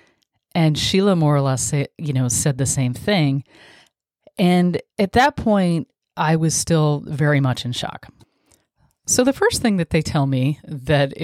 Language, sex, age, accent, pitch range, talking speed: English, female, 30-49, American, 130-160 Hz, 165 wpm